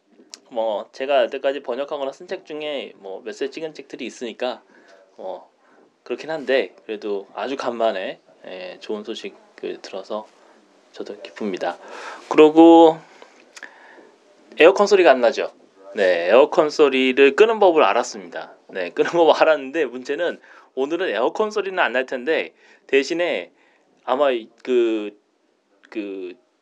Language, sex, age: Korean, male, 30-49